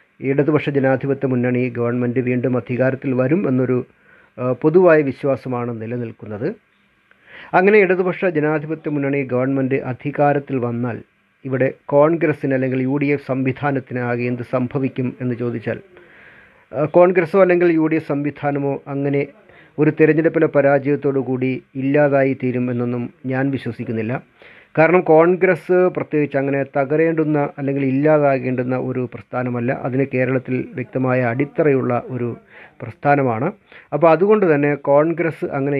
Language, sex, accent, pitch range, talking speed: Malayalam, male, native, 125-150 Hz, 95 wpm